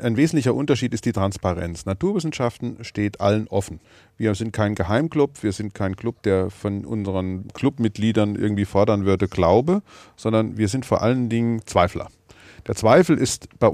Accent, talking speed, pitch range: German, 160 wpm, 100-125 Hz